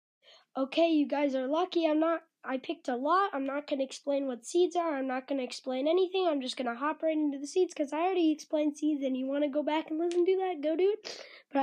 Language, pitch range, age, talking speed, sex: English, 240-315 Hz, 20-39, 270 wpm, female